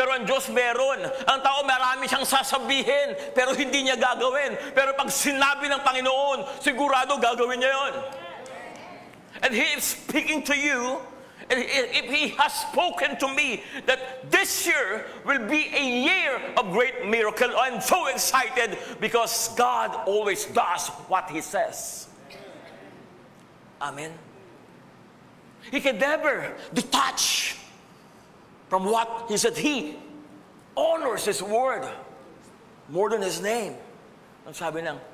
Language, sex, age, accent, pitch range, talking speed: English, male, 50-69, Filipino, 205-275 Hz, 115 wpm